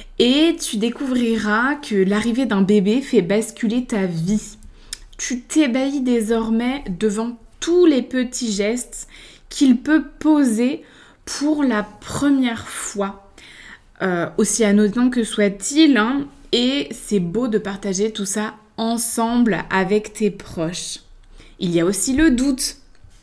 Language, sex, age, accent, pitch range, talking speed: French, female, 20-39, French, 205-260 Hz, 125 wpm